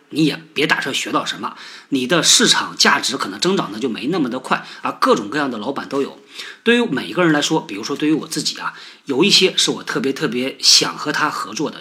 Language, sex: Chinese, male